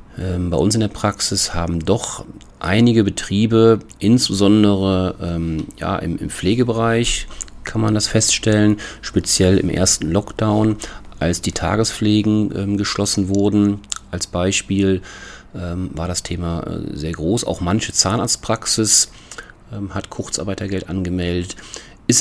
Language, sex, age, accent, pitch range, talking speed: German, male, 40-59, German, 90-110 Hz, 110 wpm